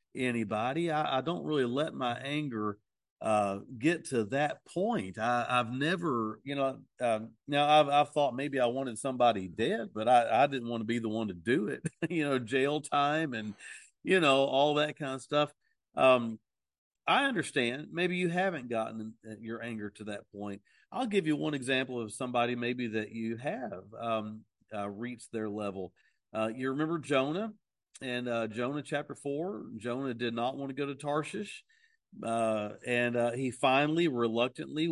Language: English